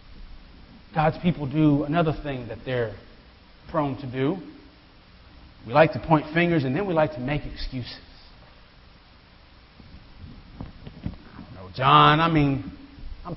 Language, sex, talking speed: English, male, 115 wpm